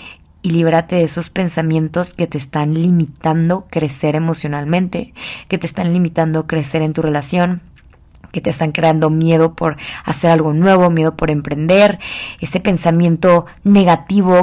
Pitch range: 160-185 Hz